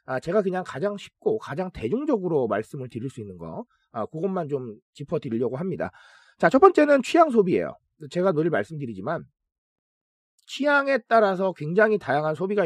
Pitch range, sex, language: 180-295 Hz, male, Korean